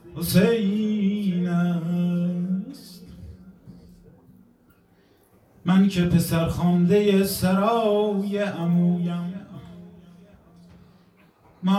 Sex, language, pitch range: male, Persian, 170-205 Hz